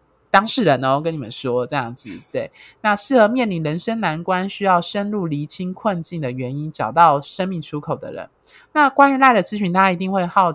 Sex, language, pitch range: male, Chinese, 150-215 Hz